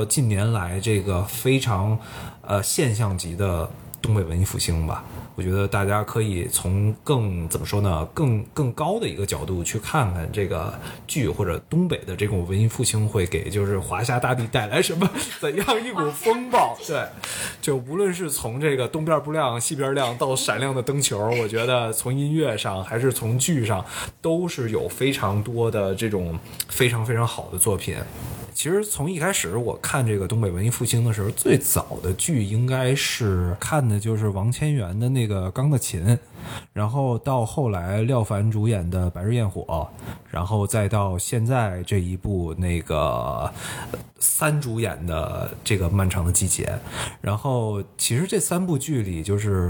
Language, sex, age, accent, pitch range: Chinese, male, 20-39, native, 100-130 Hz